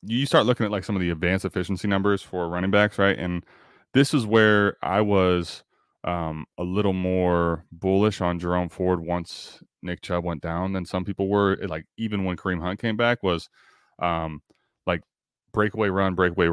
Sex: male